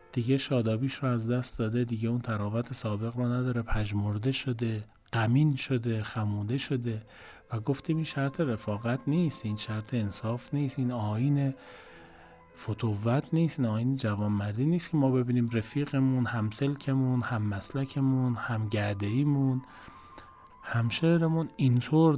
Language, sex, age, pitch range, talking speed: Persian, male, 40-59, 110-135 Hz, 130 wpm